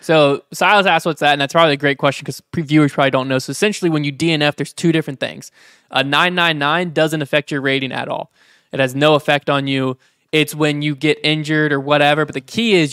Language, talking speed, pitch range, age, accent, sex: English, 235 wpm, 140-165 Hz, 20-39, American, male